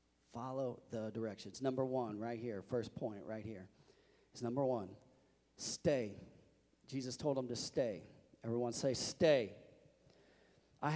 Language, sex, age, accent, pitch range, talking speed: English, male, 40-59, American, 110-150 Hz, 130 wpm